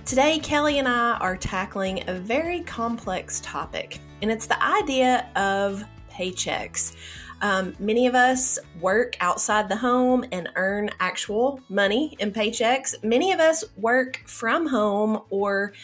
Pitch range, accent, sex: 190-260 Hz, American, female